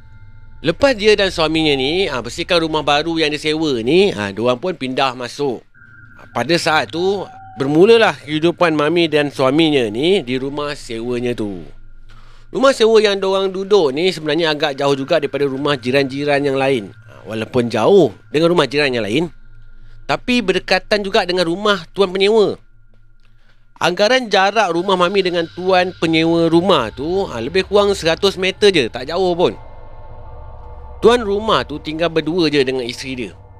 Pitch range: 115-180 Hz